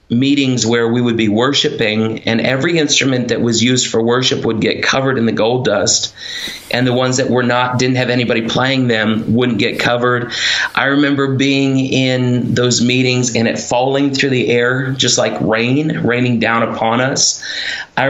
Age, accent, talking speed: 30-49, American, 180 wpm